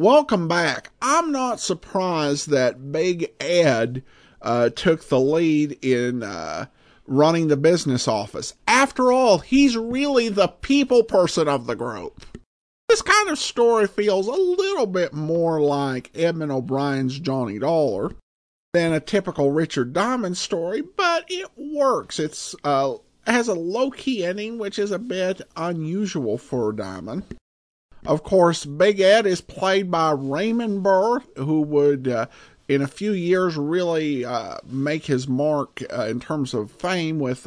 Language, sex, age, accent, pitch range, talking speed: English, male, 50-69, American, 140-205 Hz, 145 wpm